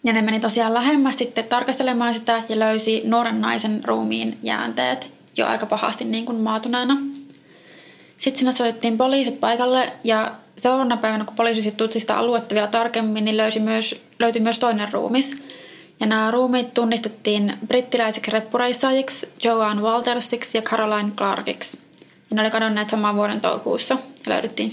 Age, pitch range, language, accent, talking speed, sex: 20-39, 215-245 Hz, Finnish, native, 145 wpm, female